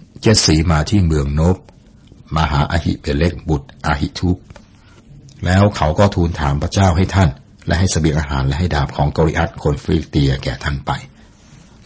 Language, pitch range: Thai, 70-95 Hz